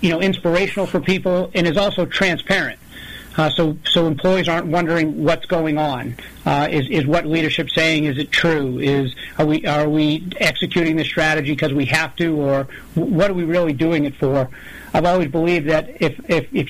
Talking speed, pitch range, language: 195 wpm, 150-180 Hz, English